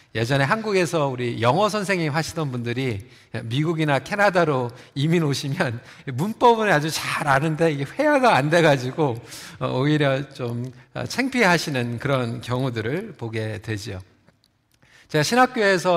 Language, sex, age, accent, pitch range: Korean, male, 40-59, native, 130-200 Hz